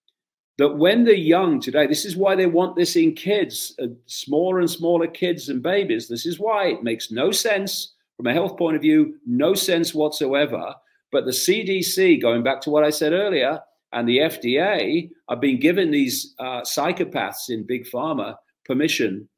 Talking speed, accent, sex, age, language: 185 wpm, British, male, 50-69, English